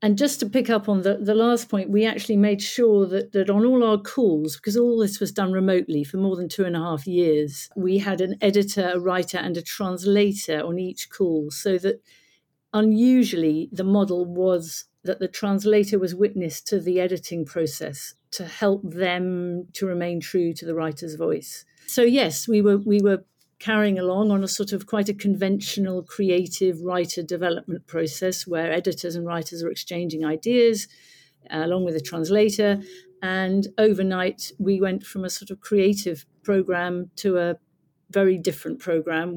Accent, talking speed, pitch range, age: British, 180 wpm, 170-200 Hz, 50-69